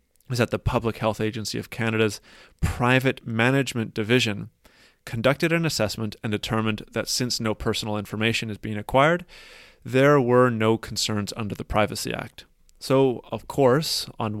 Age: 30-49